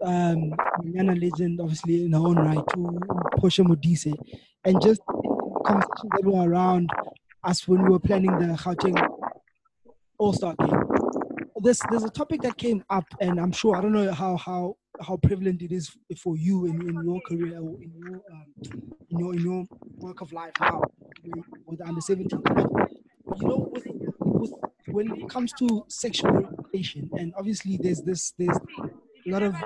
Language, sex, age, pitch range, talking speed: English, male, 20-39, 170-200 Hz, 180 wpm